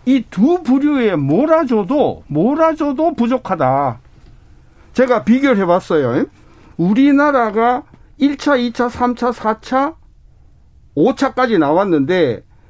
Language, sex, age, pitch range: Korean, male, 60-79, 215-285 Hz